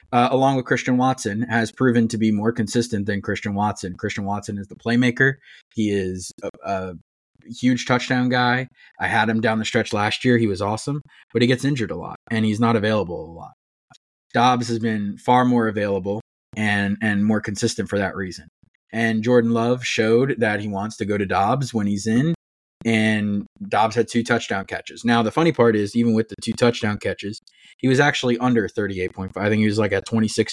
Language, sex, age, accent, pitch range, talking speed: English, male, 20-39, American, 105-120 Hz, 205 wpm